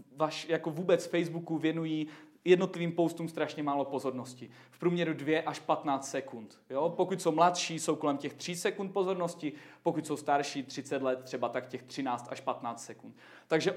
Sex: male